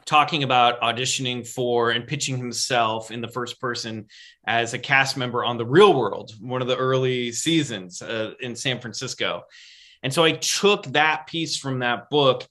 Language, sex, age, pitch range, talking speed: English, male, 30-49, 120-155 Hz, 180 wpm